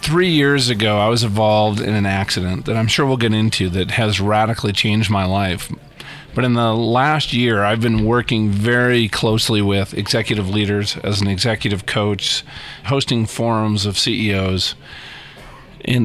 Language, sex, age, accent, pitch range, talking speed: English, male, 40-59, American, 105-130 Hz, 160 wpm